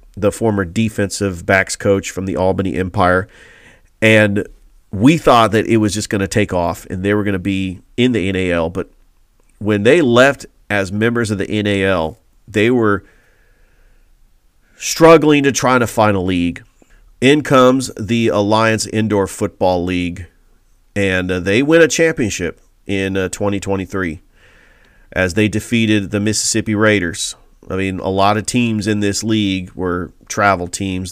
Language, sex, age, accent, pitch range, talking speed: English, male, 40-59, American, 95-115 Hz, 150 wpm